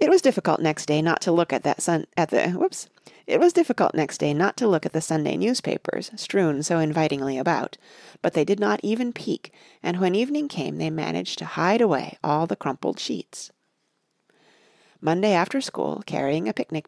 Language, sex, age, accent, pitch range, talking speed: English, female, 40-59, American, 160-220 Hz, 195 wpm